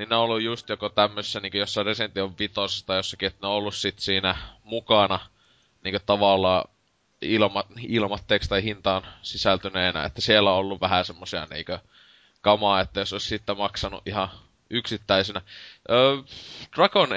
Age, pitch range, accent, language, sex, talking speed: 20-39, 95-110 Hz, native, Finnish, male, 155 wpm